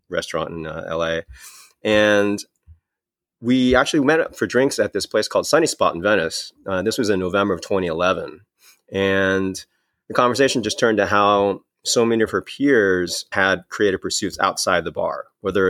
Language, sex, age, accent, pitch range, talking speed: English, male, 30-49, American, 90-110 Hz, 170 wpm